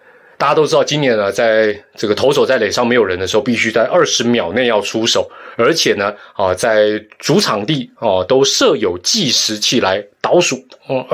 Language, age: Chinese, 30-49